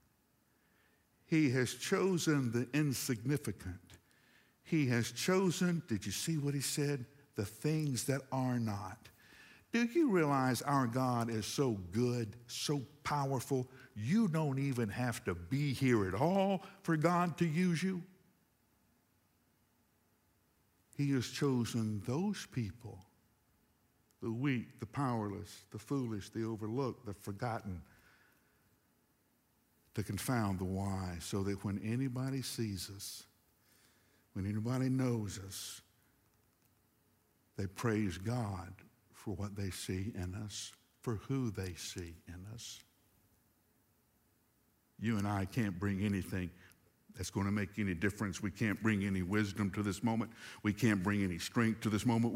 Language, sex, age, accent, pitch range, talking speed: English, male, 60-79, American, 100-130 Hz, 130 wpm